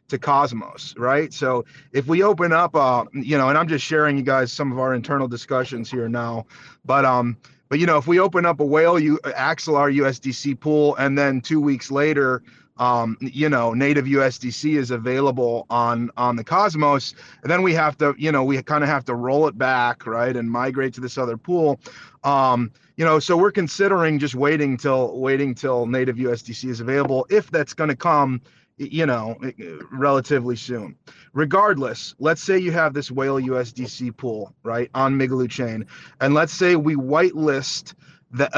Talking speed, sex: 190 wpm, male